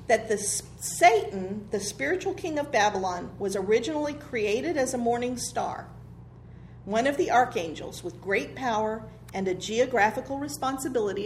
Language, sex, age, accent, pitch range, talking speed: English, female, 40-59, American, 195-270 Hz, 140 wpm